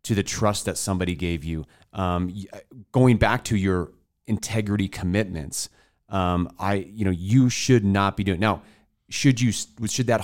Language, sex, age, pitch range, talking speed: English, male, 30-49, 90-110 Hz, 165 wpm